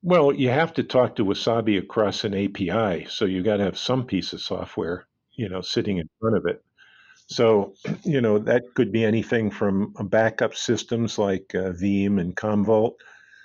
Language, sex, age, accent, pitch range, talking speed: English, male, 50-69, American, 100-115 Hz, 185 wpm